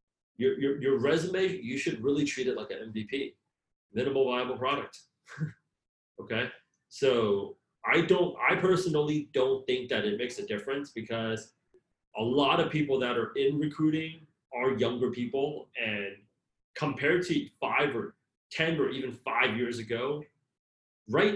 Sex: male